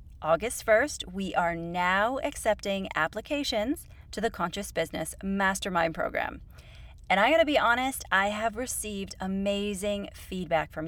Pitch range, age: 175-220 Hz, 30-49